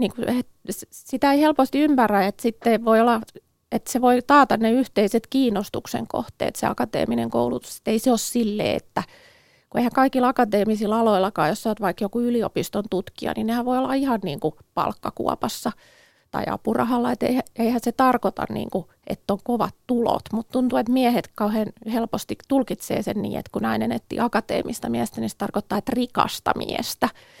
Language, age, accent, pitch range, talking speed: Finnish, 30-49, native, 205-250 Hz, 165 wpm